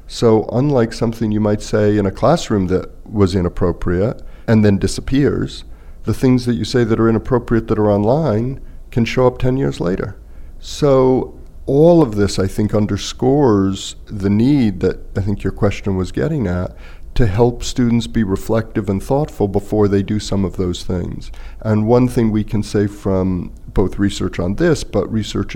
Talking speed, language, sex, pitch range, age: 180 wpm, English, male, 95-115 Hz, 50-69